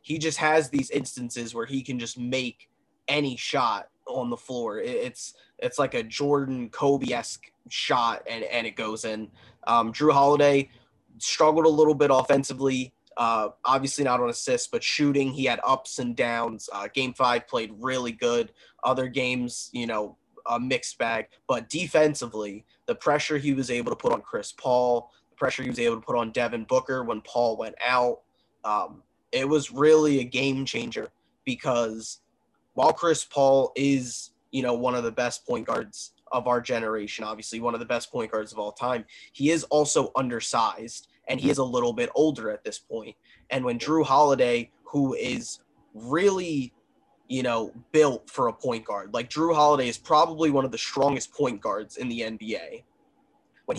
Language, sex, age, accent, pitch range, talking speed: English, male, 20-39, American, 120-150 Hz, 180 wpm